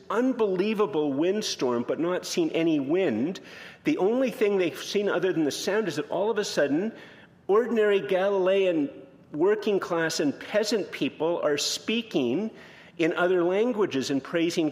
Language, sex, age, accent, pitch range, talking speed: English, male, 50-69, American, 185-240 Hz, 145 wpm